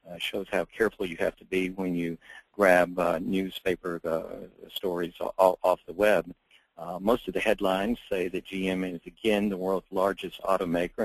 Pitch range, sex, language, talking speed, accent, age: 90-95 Hz, male, English, 180 wpm, American, 50-69